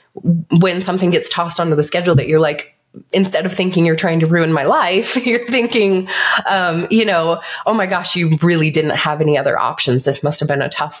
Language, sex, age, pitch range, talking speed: English, female, 20-39, 165-195 Hz, 220 wpm